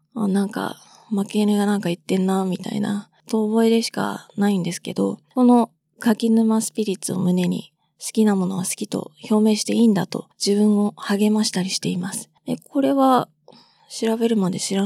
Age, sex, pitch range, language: 20-39, female, 185-220 Hz, Japanese